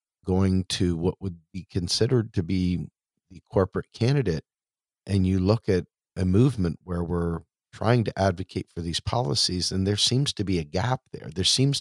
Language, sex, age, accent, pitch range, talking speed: English, male, 40-59, American, 90-115 Hz, 180 wpm